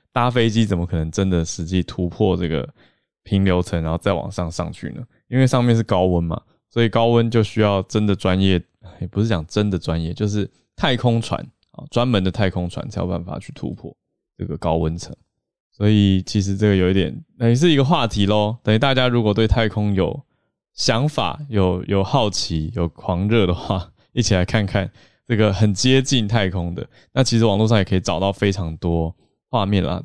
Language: Chinese